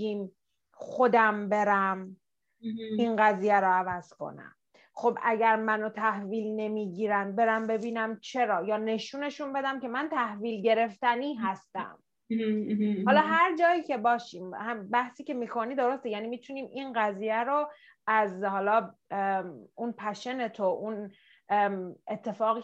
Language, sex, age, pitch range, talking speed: Persian, female, 30-49, 205-255 Hz, 120 wpm